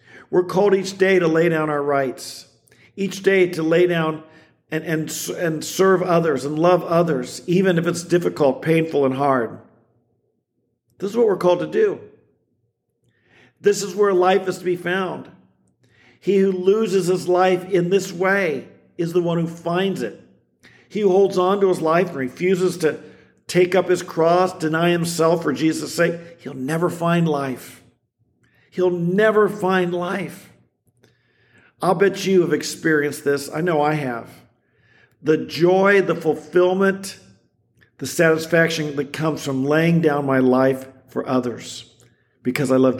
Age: 50-69